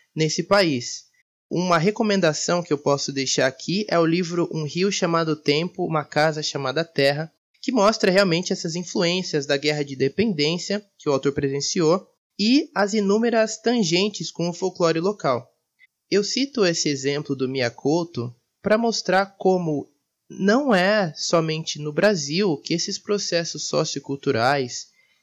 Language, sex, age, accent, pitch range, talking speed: Portuguese, male, 20-39, Brazilian, 145-195 Hz, 140 wpm